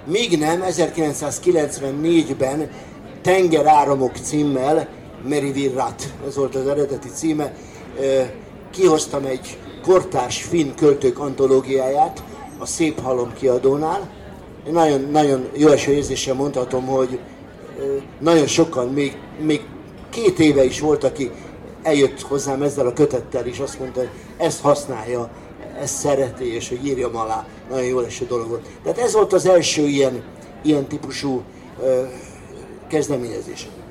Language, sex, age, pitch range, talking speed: Hungarian, male, 50-69, 130-155 Hz, 115 wpm